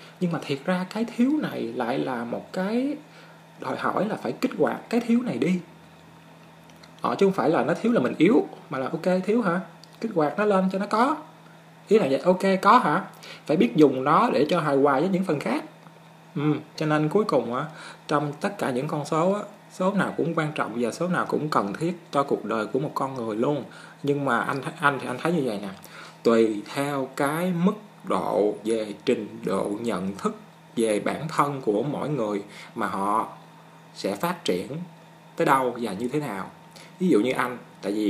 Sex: male